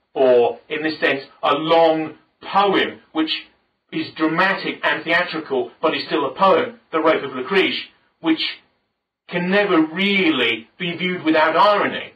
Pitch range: 130-175 Hz